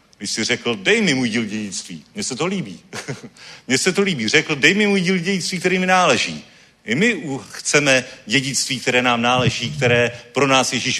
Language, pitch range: Czech, 120-180 Hz